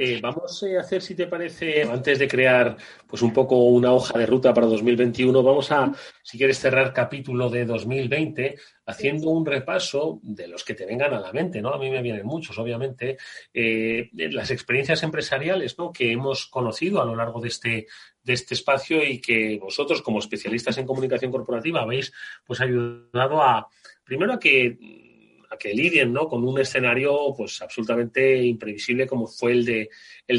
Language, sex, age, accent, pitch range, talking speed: Spanish, male, 30-49, Spanish, 120-140 Hz, 180 wpm